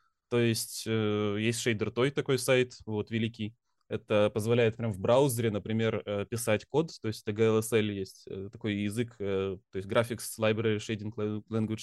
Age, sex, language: 20-39, male, Russian